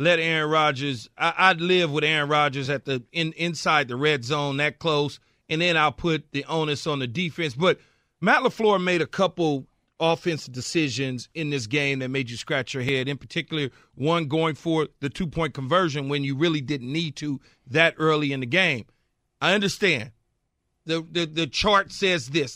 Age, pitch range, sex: 40-59, 155-215 Hz, male